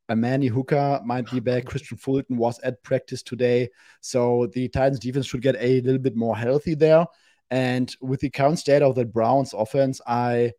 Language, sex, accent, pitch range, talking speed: English, male, German, 120-130 Hz, 195 wpm